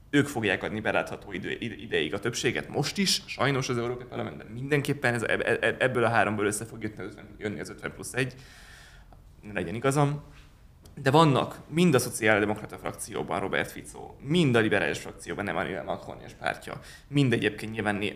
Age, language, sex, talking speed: 20-39, Hungarian, male, 160 wpm